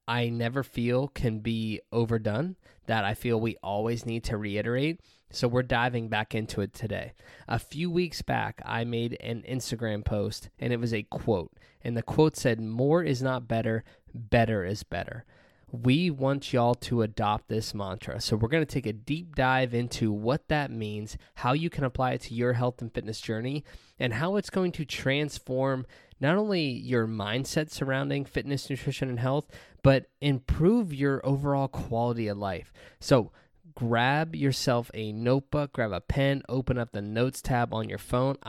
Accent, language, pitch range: American, English, 110-140 Hz